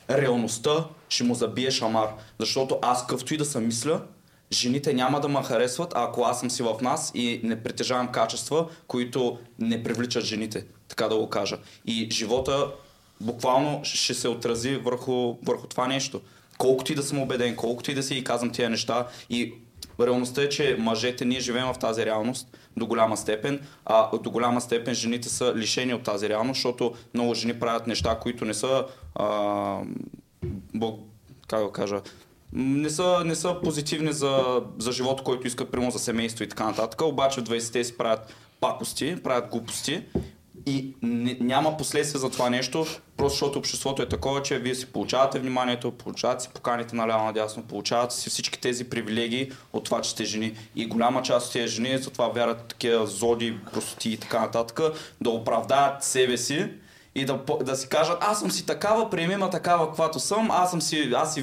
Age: 20-39